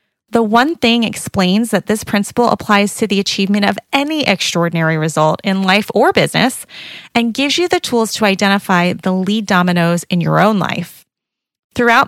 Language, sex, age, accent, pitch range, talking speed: English, female, 30-49, American, 180-235 Hz, 170 wpm